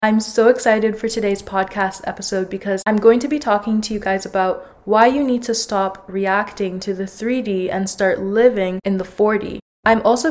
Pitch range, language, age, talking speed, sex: 195-235 Hz, English, 20-39, 200 wpm, female